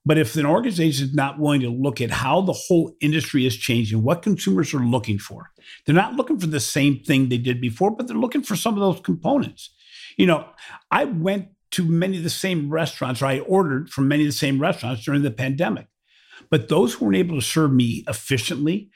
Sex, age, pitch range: male, 50-69, 130-180 Hz